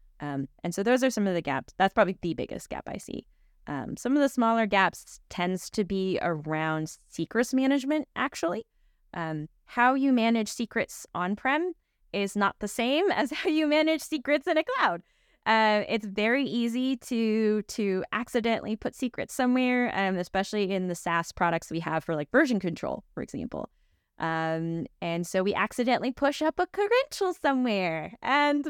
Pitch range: 165-245 Hz